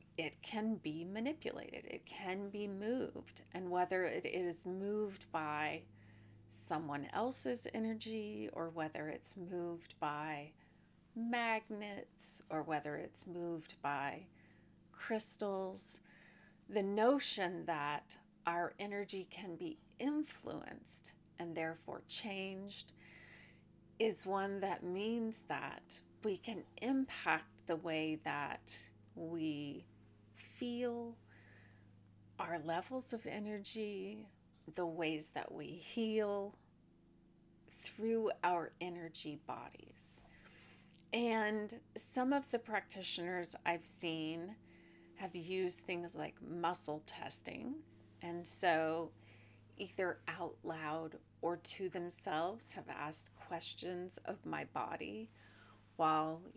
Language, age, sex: English, 30-49, female